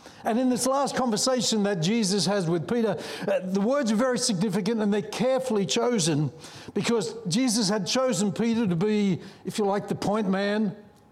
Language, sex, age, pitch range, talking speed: English, male, 60-79, 190-230 Hz, 175 wpm